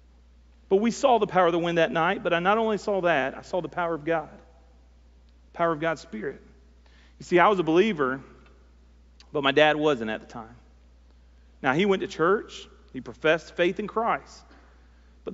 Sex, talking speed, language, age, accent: male, 200 wpm, English, 40-59, American